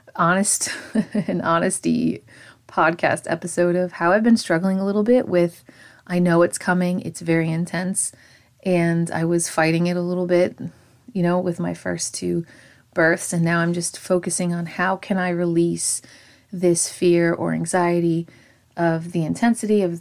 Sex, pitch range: female, 165-190 Hz